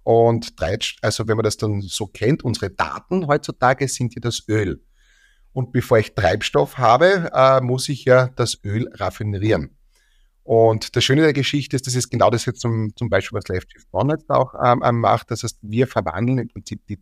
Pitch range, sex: 95-125 Hz, male